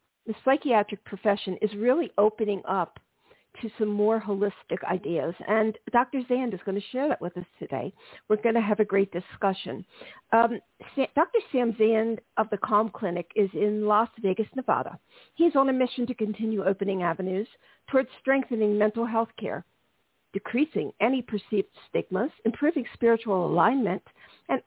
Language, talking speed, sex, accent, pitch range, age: English, 155 wpm, female, American, 205-245 Hz, 50-69